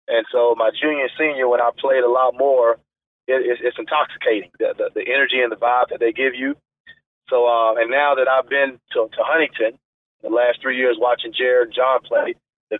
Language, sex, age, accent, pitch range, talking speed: English, male, 40-59, American, 120-155 Hz, 210 wpm